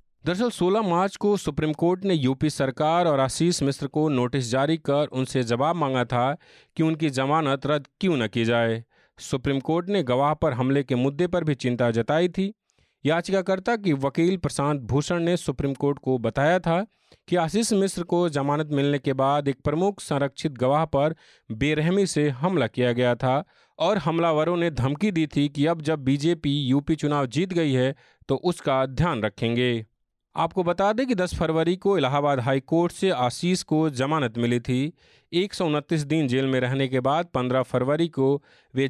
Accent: native